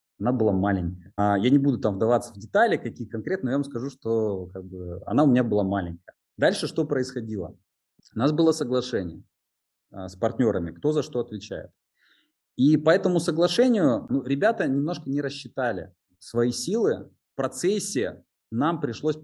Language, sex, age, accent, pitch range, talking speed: Russian, male, 20-39, native, 100-140 Hz, 160 wpm